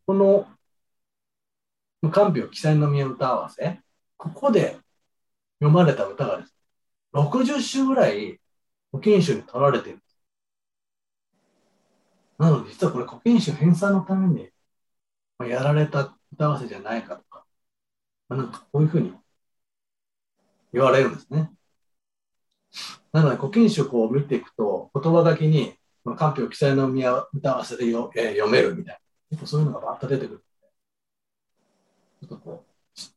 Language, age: Japanese, 40-59